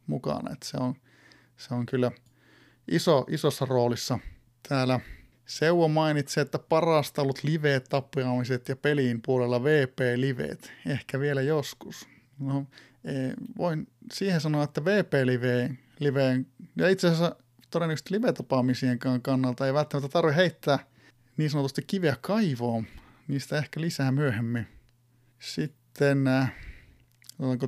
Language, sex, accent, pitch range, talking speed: Finnish, male, native, 125-150 Hz, 115 wpm